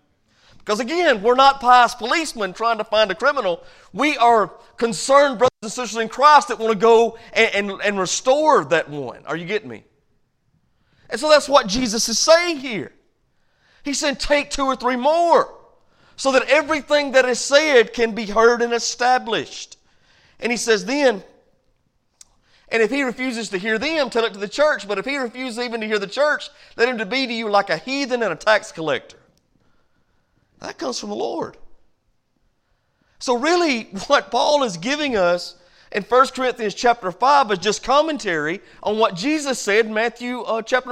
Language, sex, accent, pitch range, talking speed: English, male, American, 200-270 Hz, 180 wpm